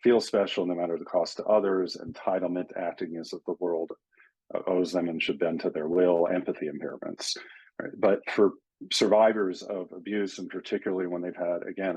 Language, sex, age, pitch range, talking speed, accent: English, male, 40-59, 90-115 Hz, 180 wpm, American